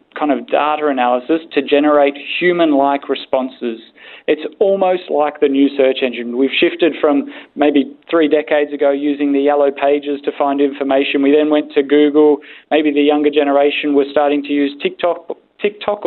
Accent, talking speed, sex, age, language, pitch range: Australian, 165 wpm, male, 20-39, English, 135-155 Hz